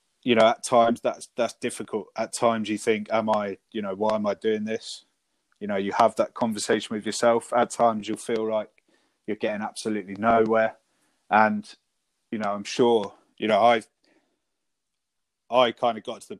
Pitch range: 100-115 Hz